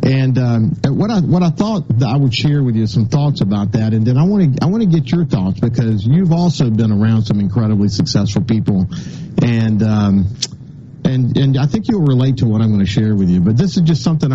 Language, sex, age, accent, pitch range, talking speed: English, male, 50-69, American, 115-150 Hz, 240 wpm